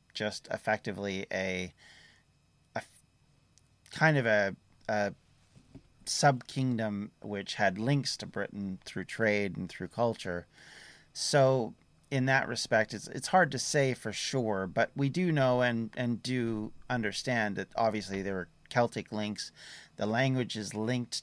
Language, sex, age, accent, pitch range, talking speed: English, male, 30-49, American, 105-130 Hz, 135 wpm